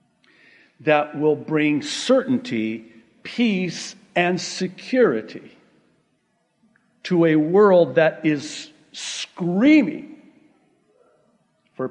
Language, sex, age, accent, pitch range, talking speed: English, male, 50-69, American, 140-215 Hz, 70 wpm